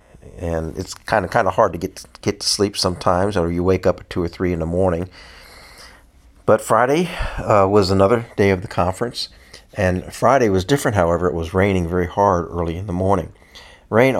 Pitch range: 85-100 Hz